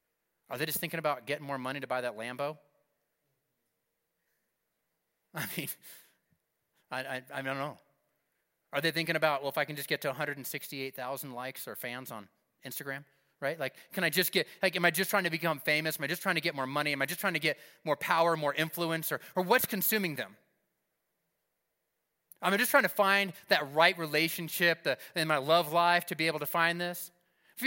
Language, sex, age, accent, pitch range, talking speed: English, male, 30-49, American, 150-230 Hz, 205 wpm